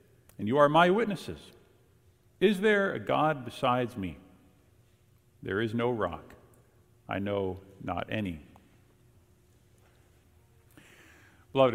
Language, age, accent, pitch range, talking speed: English, 50-69, American, 105-160 Hz, 100 wpm